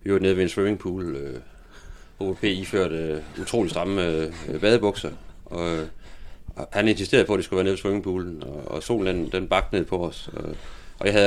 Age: 30-49